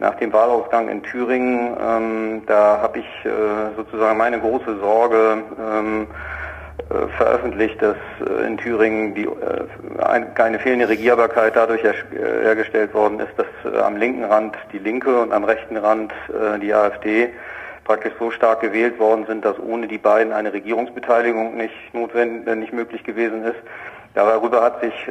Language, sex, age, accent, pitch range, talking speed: German, male, 40-59, German, 110-115 Hz, 145 wpm